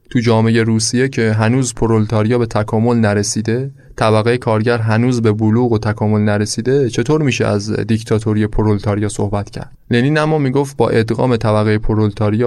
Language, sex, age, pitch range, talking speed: Persian, male, 20-39, 110-130 Hz, 150 wpm